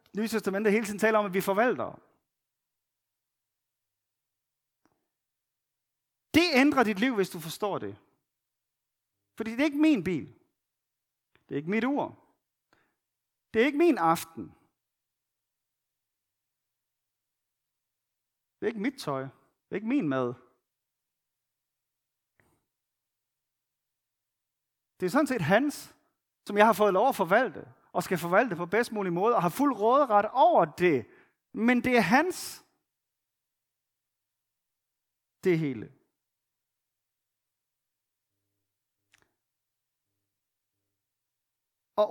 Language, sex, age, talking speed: Danish, male, 40-59, 110 wpm